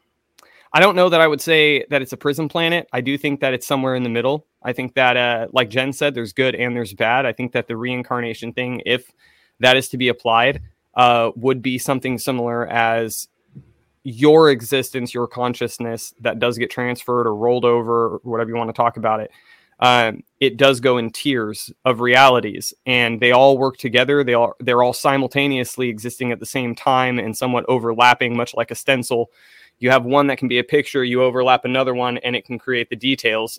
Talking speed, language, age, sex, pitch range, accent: 205 wpm, English, 20-39, male, 120-140 Hz, American